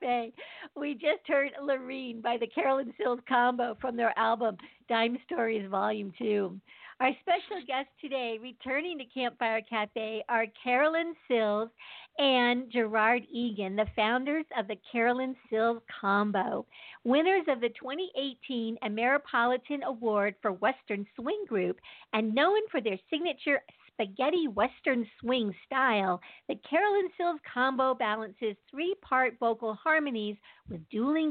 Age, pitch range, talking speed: 50-69, 220-285 Hz, 130 wpm